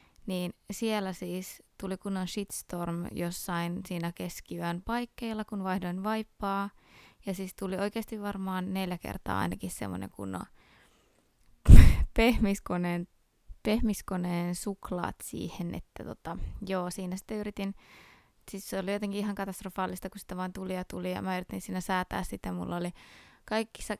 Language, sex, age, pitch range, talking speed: Finnish, female, 20-39, 180-210 Hz, 140 wpm